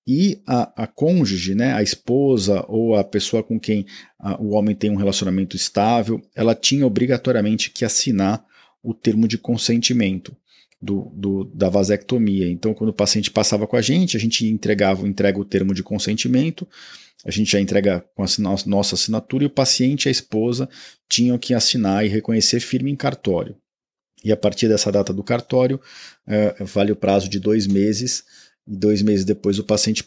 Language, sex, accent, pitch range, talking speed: Portuguese, male, Brazilian, 100-120 Hz, 180 wpm